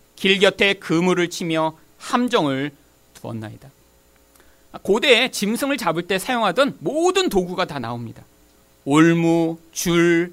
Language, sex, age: Korean, male, 40-59